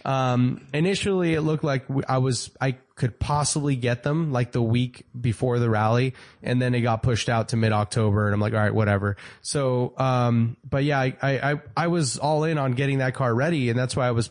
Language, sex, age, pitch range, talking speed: English, male, 20-39, 115-135 Hz, 220 wpm